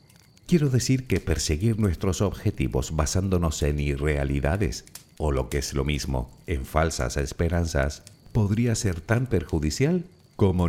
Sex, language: male, Spanish